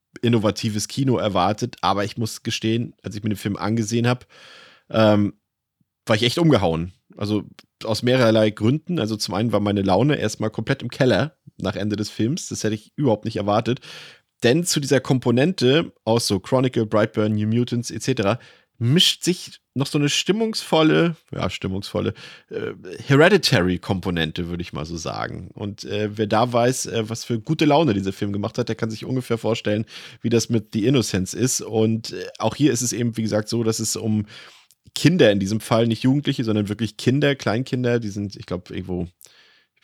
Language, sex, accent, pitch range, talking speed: German, male, German, 100-125 Hz, 185 wpm